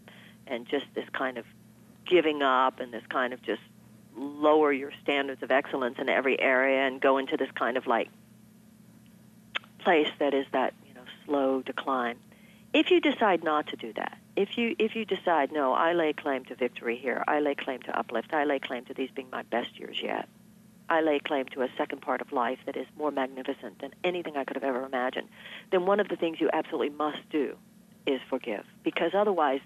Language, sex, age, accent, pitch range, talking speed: English, female, 50-69, American, 140-210 Hz, 205 wpm